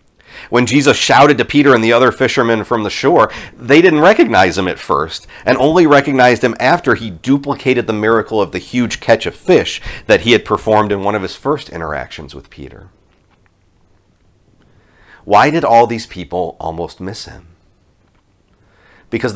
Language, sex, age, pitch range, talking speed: English, male, 40-59, 85-115 Hz, 165 wpm